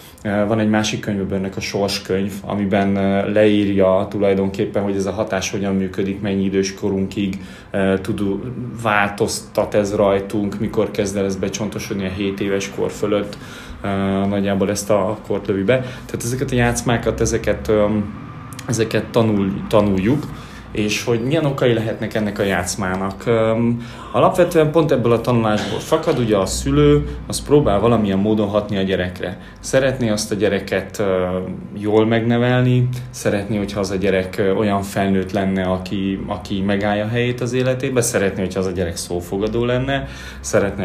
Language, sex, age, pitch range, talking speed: Hungarian, male, 20-39, 100-115 Hz, 140 wpm